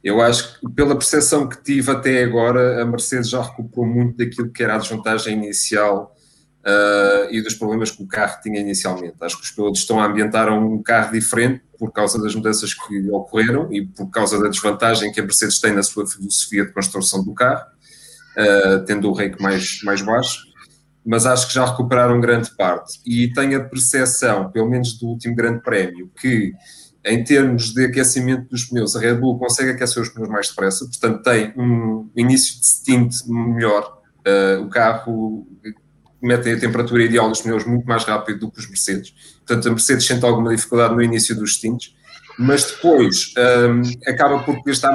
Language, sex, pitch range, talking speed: English, male, 105-130 Hz, 185 wpm